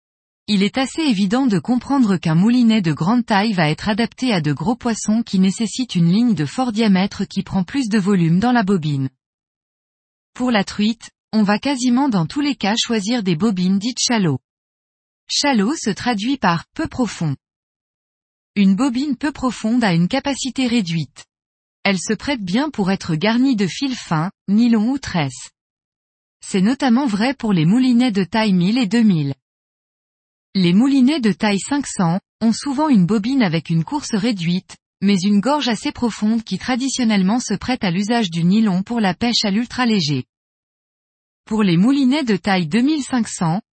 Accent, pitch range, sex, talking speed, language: French, 185-250 Hz, female, 170 wpm, French